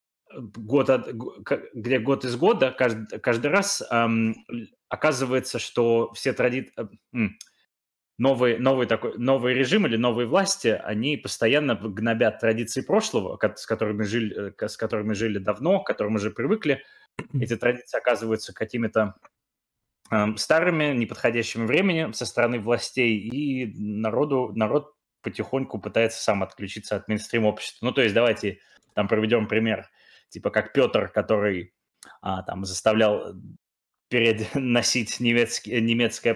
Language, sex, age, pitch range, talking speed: Russian, male, 20-39, 105-125 Hz, 125 wpm